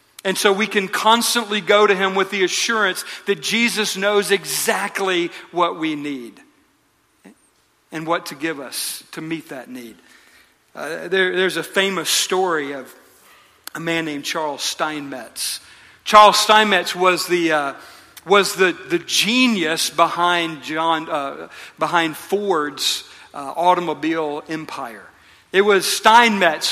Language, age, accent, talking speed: English, 50-69, American, 135 wpm